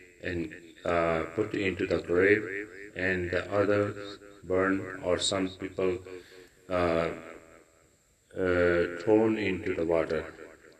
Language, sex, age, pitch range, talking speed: Punjabi, male, 40-59, 85-100 Hz, 105 wpm